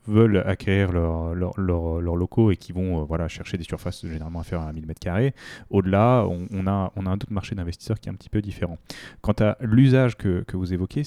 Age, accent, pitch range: 20-39, French, 90-110 Hz